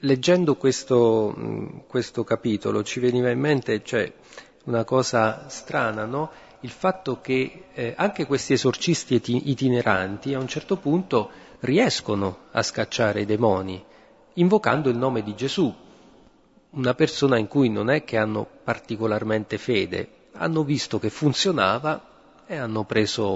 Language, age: Italian, 40-59